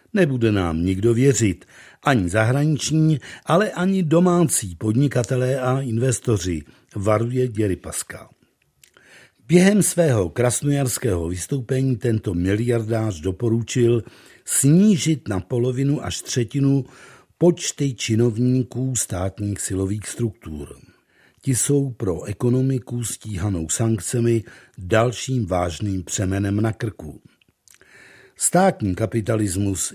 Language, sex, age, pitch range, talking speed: Czech, male, 60-79, 100-135 Hz, 90 wpm